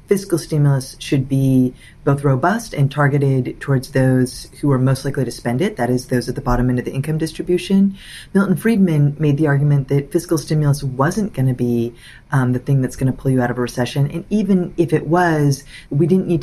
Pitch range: 130-170 Hz